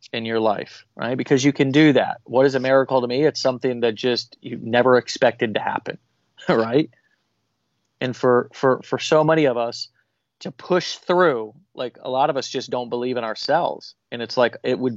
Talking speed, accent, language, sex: 205 wpm, American, English, male